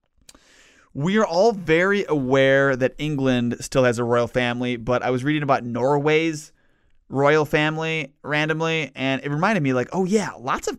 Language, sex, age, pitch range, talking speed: English, male, 20-39, 130-165 Hz, 165 wpm